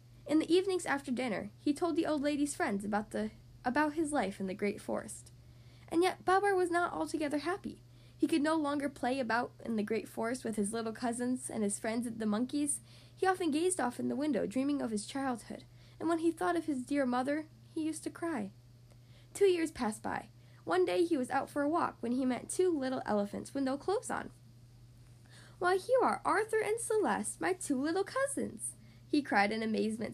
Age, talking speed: 10-29, 215 wpm